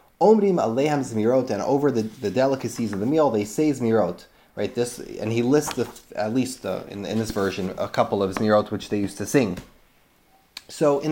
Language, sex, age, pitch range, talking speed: English, male, 30-49, 110-140 Hz, 190 wpm